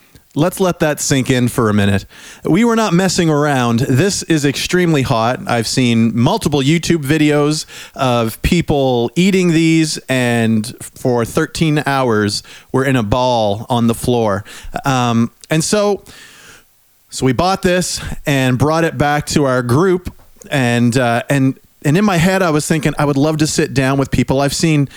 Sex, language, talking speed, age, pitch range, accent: male, English, 170 wpm, 40-59, 125-155 Hz, American